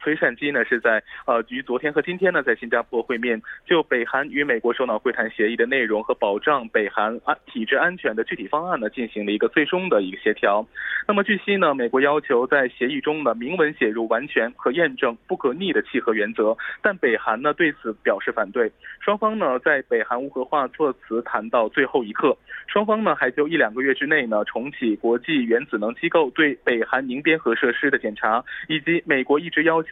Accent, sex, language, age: Chinese, male, Korean, 20-39